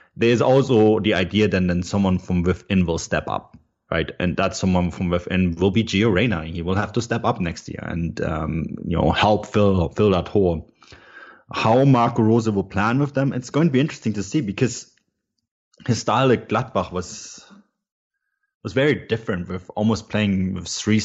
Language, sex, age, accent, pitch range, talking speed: English, male, 30-49, German, 90-110 Hz, 190 wpm